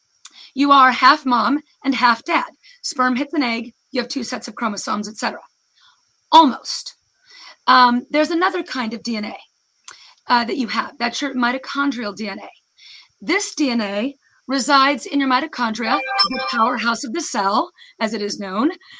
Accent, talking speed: American, 155 wpm